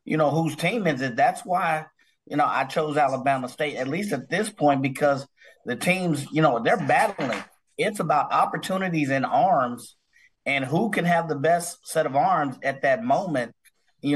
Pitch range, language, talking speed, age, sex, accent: 135-175 Hz, English, 185 wpm, 30-49, male, American